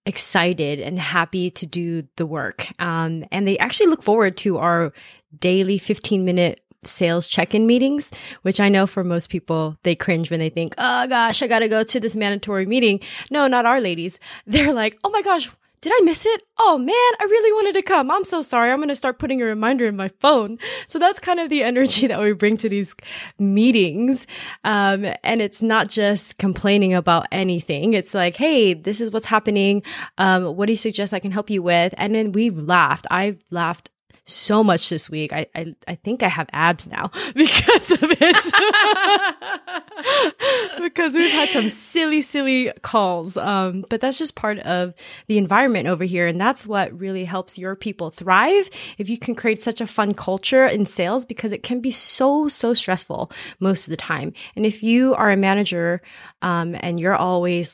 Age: 20-39